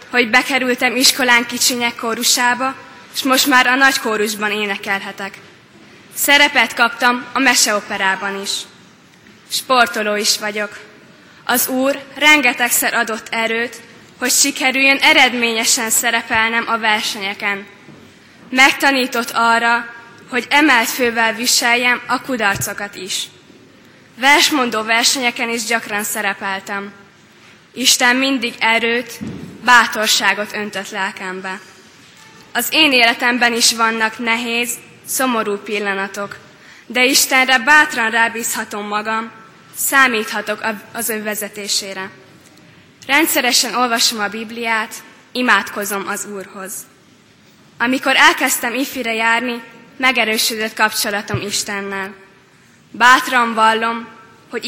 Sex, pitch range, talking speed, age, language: female, 210-245 Hz, 95 wpm, 20-39, Hungarian